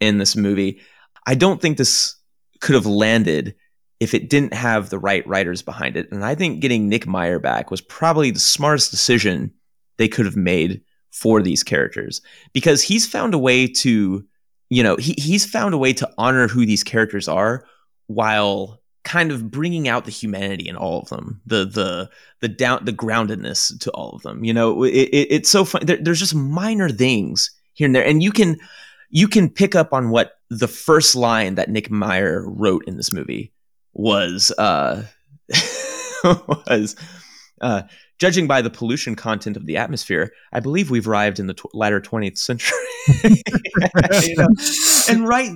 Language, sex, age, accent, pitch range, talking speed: English, male, 30-49, American, 110-165 Hz, 180 wpm